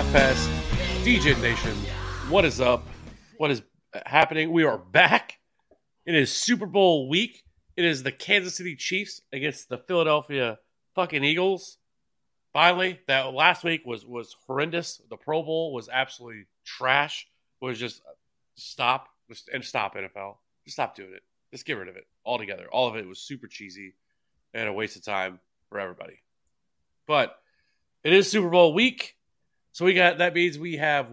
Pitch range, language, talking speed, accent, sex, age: 115-160 Hz, English, 160 wpm, American, male, 30-49